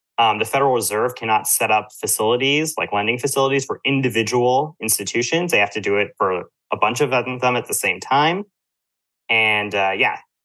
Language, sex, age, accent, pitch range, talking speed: English, male, 30-49, American, 105-135 Hz, 180 wpm